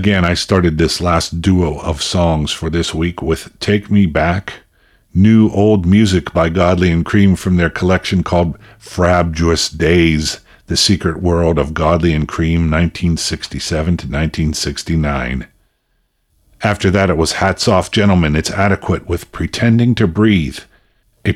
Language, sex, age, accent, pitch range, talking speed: English, male, 50-69, American, 80-95 Hz, 140 wpm